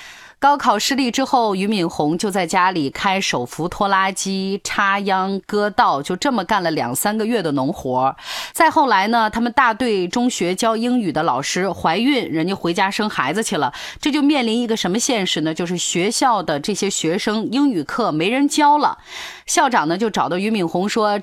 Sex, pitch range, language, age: female, 170-245 Hz, Chinese, 30-49